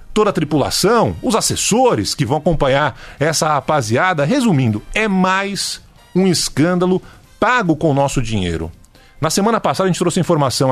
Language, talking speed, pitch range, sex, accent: Portuguese, 150 wpm, 140-185 Hz, male, Brazilian